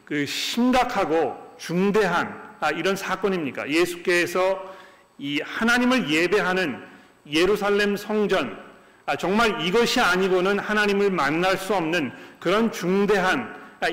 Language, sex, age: Korean, male, 40-59